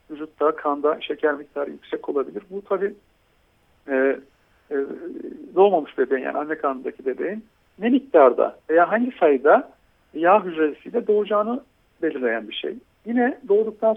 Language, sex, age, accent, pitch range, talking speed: Turkish, male, 60-79, native, 150-225 Hz, 125 wpm